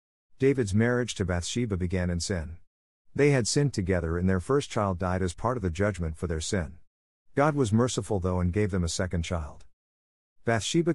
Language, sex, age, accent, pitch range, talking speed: English, male, 50-69, American, 85-110 Hz, 190 wpm